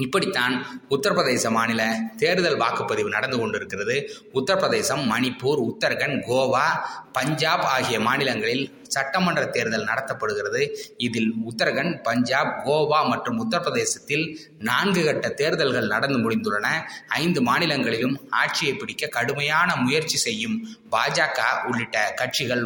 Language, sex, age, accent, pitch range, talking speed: Tamil, male, 20-39, native, 125-210 Hz, 100 wpm